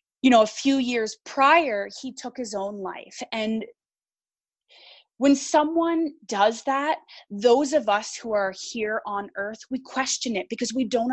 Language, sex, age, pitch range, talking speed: English, female, 20-39, 200-265 Hz, 160 wpm